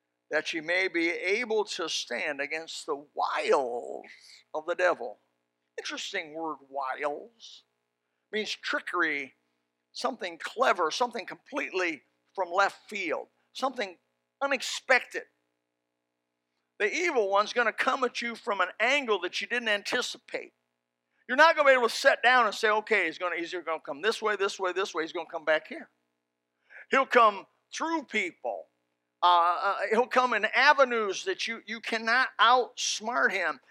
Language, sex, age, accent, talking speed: English, male, 50-69, American, 150 wpm